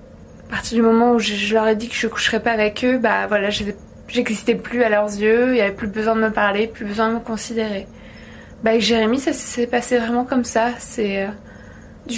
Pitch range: 210-235 Hz